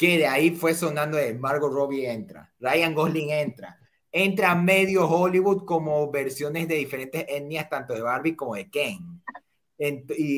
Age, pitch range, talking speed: 30-49, 130-170 Hz, 160 wpm